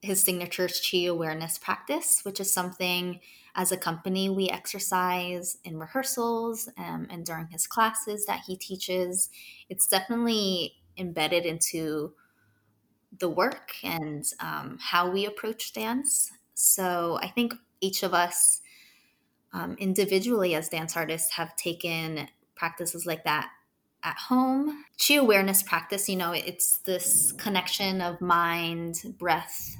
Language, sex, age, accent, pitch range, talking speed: English, female, 20-39, American, 170-195 Hz, 130 wpm